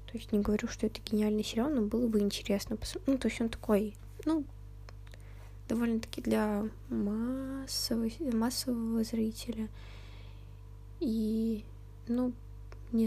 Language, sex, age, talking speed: Russian, female, 10-29, 120 wpm